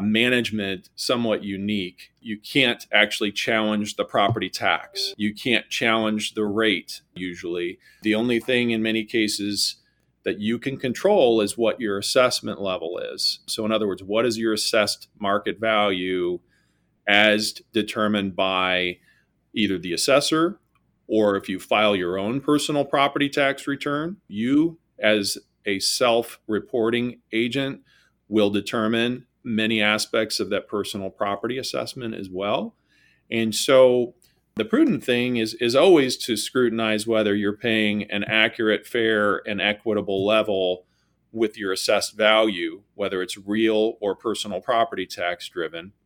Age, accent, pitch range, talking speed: 40-59, American, 105-120 Hz, 135 wpm